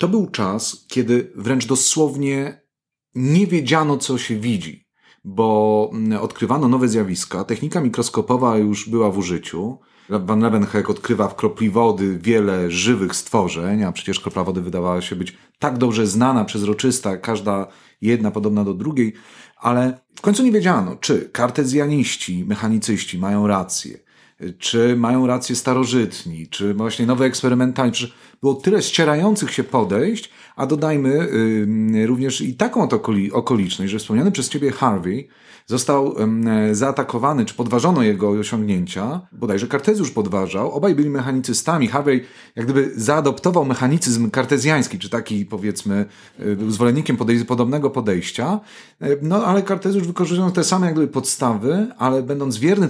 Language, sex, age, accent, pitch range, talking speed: Polish, male, 40-59, native, 110-150 Hz, 140 wpm